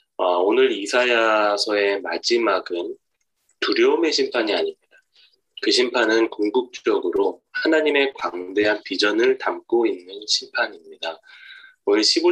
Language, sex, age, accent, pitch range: Korean, male, 20-39, native, 345-410 Hz